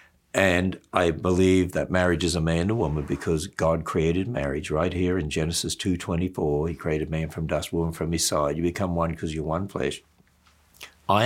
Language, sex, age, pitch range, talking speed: English, male, 60-79, 85-105 Hz, 195 wpm